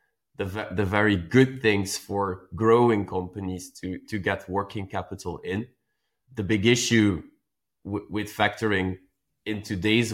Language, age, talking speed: English, 20-39, 130 wpm